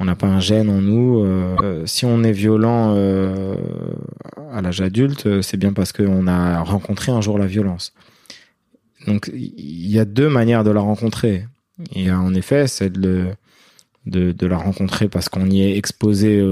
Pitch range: 90-110 Hz